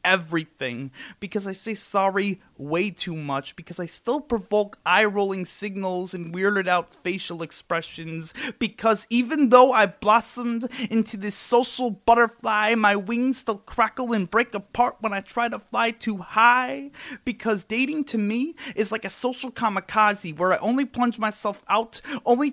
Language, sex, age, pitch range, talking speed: English, male, 30-49, 180-225 Hz, 155 wpm